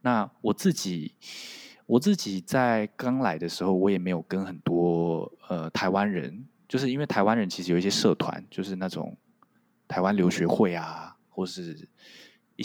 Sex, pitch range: male, 90-125 Hz